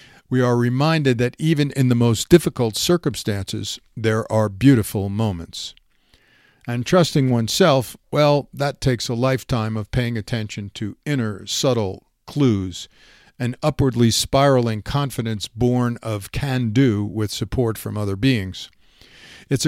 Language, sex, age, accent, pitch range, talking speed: English, male, 50-69, American, 110-135 Hz, 130 wpm